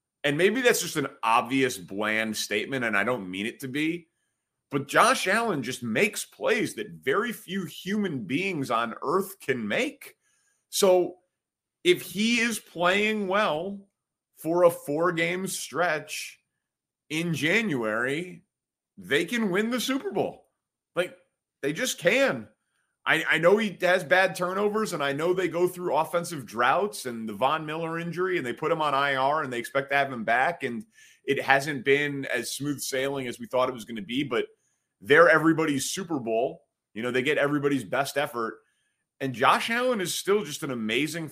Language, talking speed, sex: English, 175 wpm, male